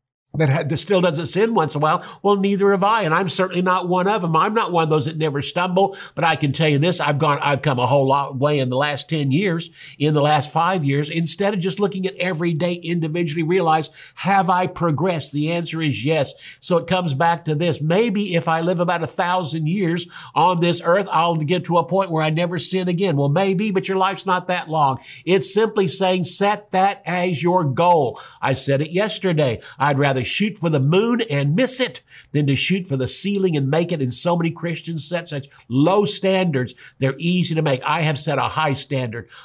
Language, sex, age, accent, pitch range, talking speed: English, male, 60-79, American, 140-180 Hz, 225 wpm